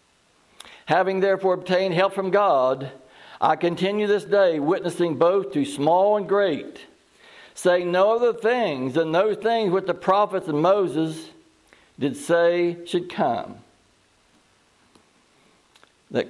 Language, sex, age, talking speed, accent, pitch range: English, male, 60-79, 120 wpm, American, 145-195 Hz